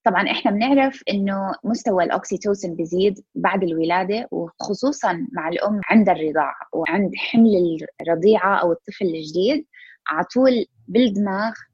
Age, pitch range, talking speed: 20-39, 180-235 Hz, 120 wpm